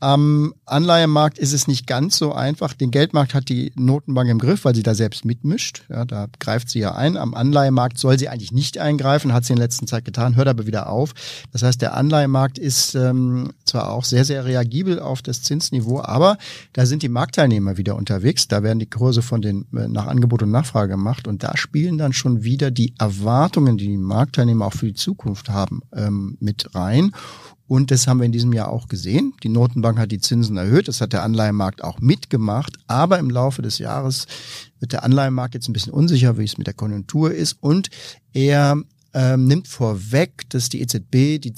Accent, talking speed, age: German, 205 wpm, 50-69